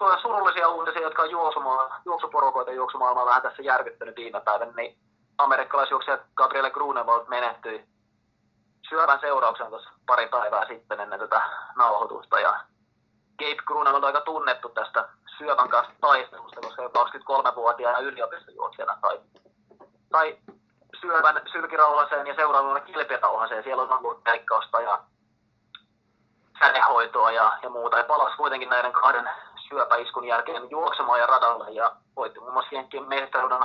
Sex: male